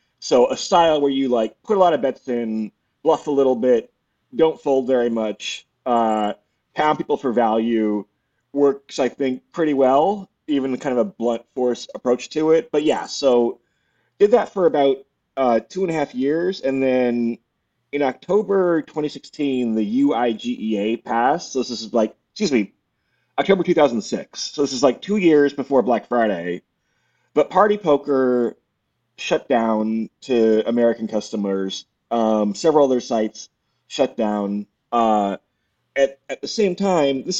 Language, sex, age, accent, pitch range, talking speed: English, male, 30-49, American, 110-145 Hz, 155 wpm